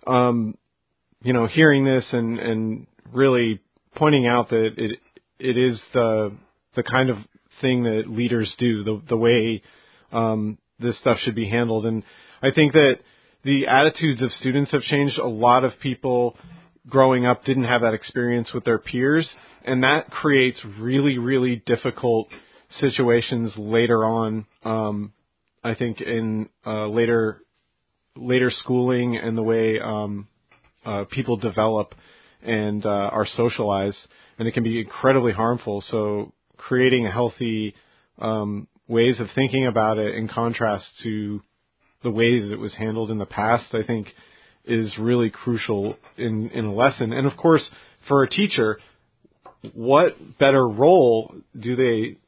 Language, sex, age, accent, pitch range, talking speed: English, male, 40-59, American, 110-125 Hz, 145 wpm